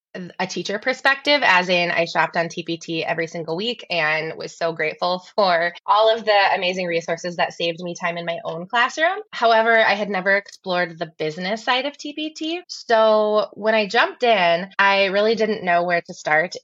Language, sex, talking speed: English, female, 190 wpm